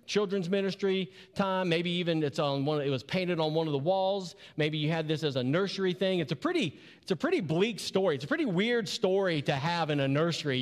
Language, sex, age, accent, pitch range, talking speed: English, male, 40-59, American, 150-200 Hz, 240 wpm